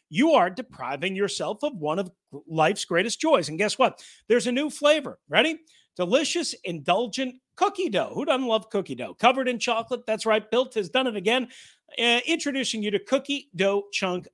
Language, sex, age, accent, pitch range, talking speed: English, male, 40-59, American, 195-265 Hz, 185 wpm